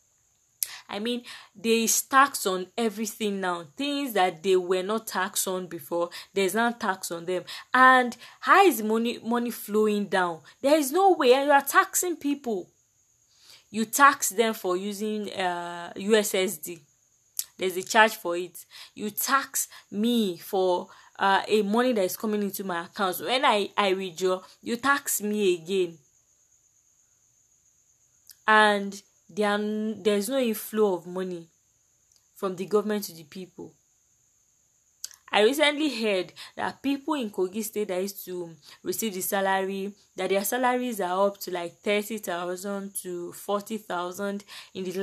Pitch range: 185-225 Hz